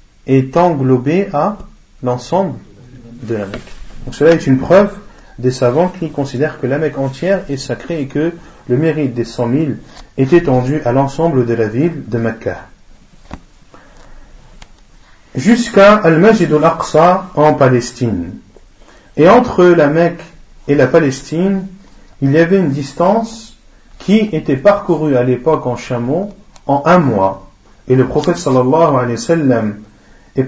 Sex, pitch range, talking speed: male, 125-175 Hz, 145 wpm